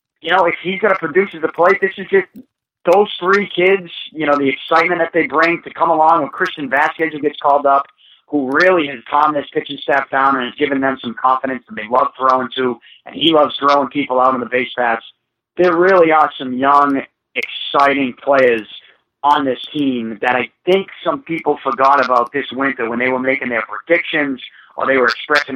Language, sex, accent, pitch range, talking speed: English, male, American, 130-160 Hz, 210 wpm